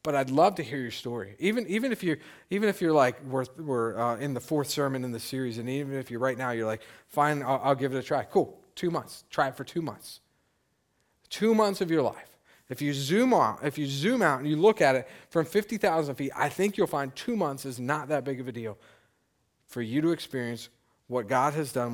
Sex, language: male, English